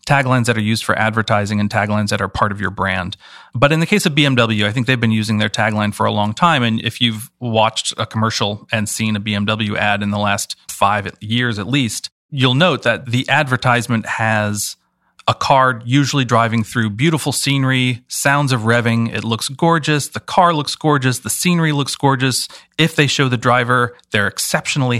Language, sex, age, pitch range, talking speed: English, male, 40-59, 105-130 Hz, 200 wpm